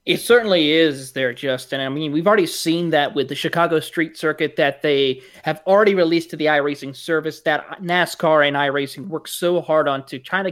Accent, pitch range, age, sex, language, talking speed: American, 145-175 Hz, 30-49, male, English, 205 wpm